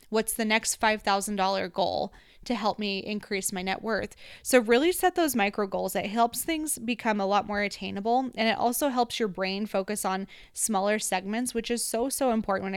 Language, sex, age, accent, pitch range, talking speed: English, female, 20-39, American, 200-255 Hz, 195 wpm